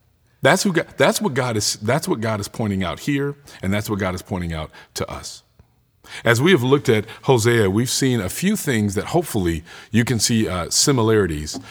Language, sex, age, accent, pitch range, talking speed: English, male, 50-69, American, 95-135 Hz, 210 wpm